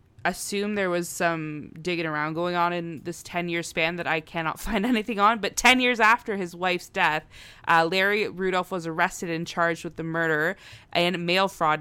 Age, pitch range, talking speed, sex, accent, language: 20-39, 165-205 Hz, 200 wpm, female, American, English